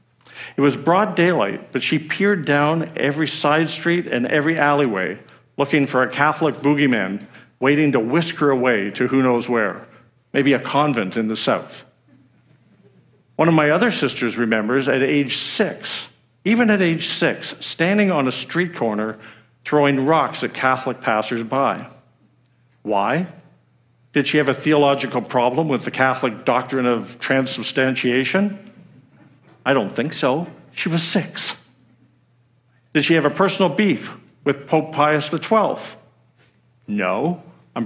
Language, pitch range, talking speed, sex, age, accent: English, 125-160 Hz, 140 wpm, male, 50-69, American